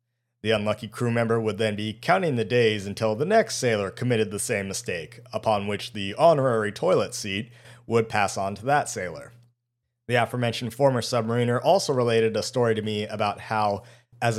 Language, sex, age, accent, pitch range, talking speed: English, male, 30-49, American, 105-125 Hz, 180 wpm